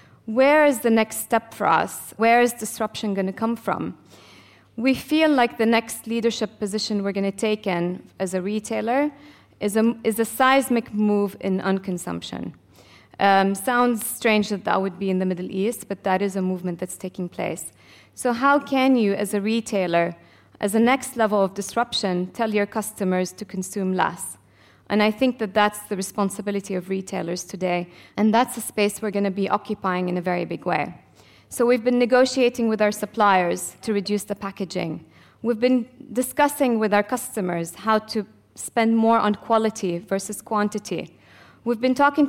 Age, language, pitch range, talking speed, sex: 20-39, English, 190-230 Hz, 180 wpm, female